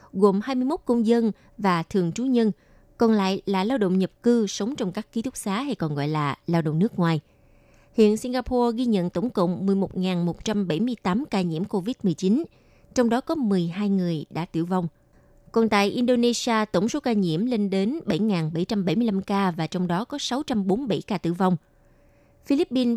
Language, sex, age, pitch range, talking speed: Vietnamese, female, 20-39, 180-240 Hz, 175 wpm